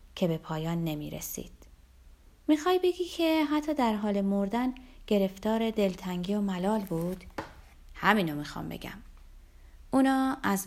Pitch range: 165-225 Hz